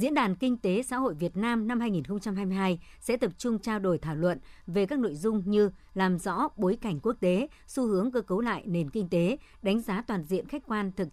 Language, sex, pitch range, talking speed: Vietnamese, male, 180-220 Hz, 230 wpm